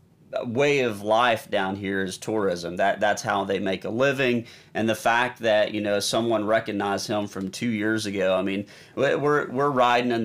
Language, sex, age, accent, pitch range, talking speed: English, male, 40-59, American, 100-120 Hz, 195 wpm